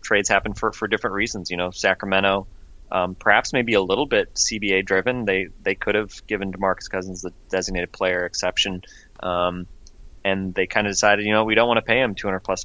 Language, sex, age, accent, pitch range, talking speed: English, male, 20-39, American, 95-110 Hz, 215 wpm